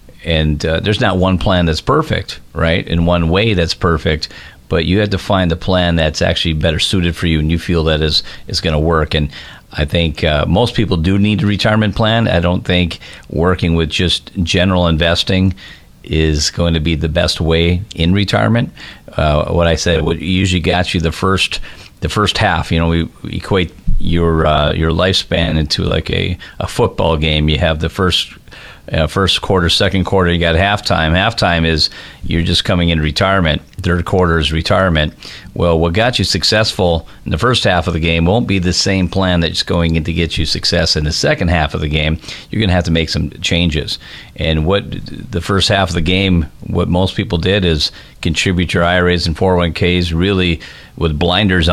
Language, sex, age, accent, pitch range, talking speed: English, male, 40-59, American, 80-90 Hz, 200 wpm